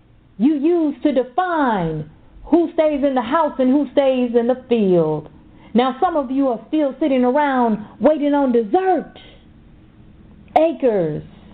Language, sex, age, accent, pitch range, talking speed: English, female, 40-59, American, 200-300 Hz, 140 wpm